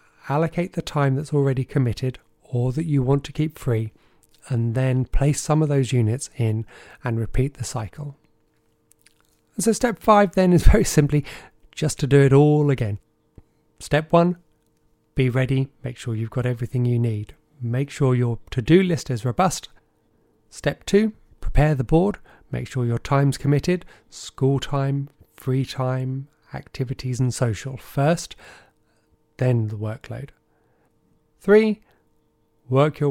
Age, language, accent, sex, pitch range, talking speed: 30-49, English, British, male, 125-155 Hz, 145 wpm